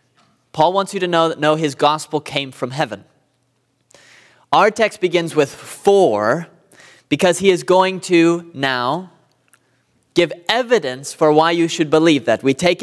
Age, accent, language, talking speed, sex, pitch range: 20-39, American, English, 150 wpm, male, 135-185 Hz